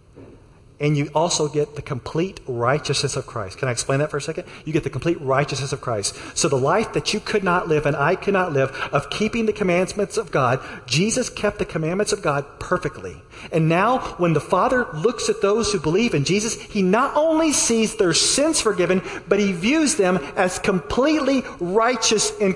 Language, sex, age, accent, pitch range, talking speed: English, male, 40-59, American, 130-185 Hz, 200 wpm